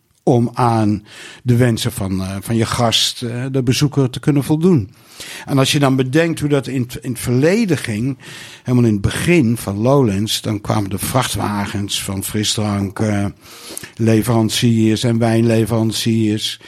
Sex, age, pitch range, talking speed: male, 60-79, 110-135 Hz, 150 wpm